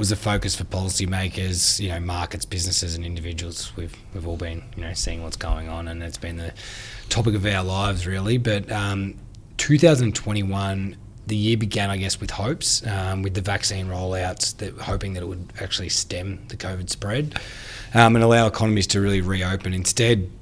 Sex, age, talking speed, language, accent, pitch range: male, 20-39, 185 wpm, English, Australian, 95-110 Hz